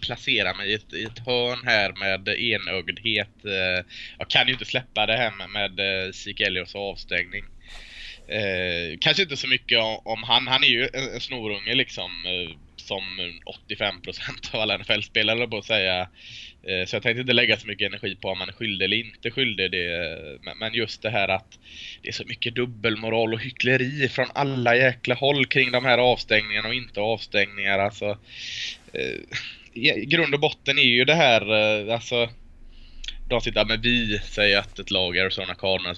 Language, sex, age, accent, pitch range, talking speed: Swedish, male, 20-39, Norwegian, 100-125 Hz, 185 wpm